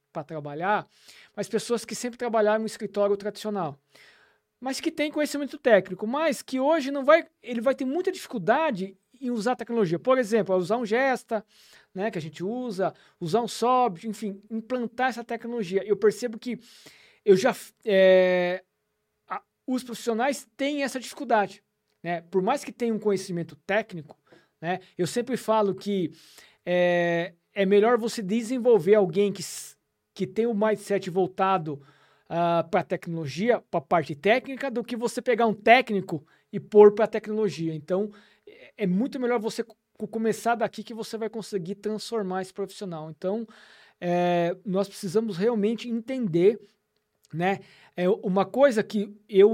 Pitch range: 185-235 Hz